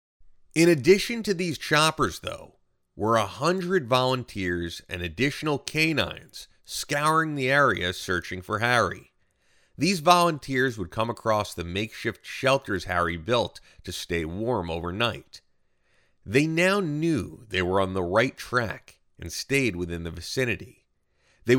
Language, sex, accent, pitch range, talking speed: English, male, American, 90-140 Hz, 135 wpm